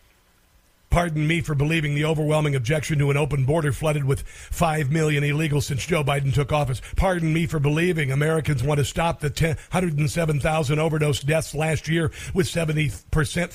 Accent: American